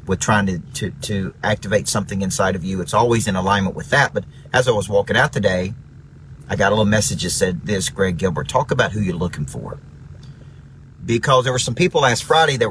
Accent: American